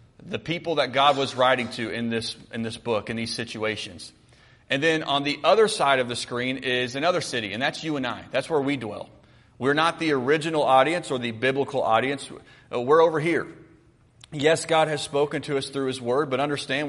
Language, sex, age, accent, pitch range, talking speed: English, male, 30-49, American, 120-145 Hz, 210 wpm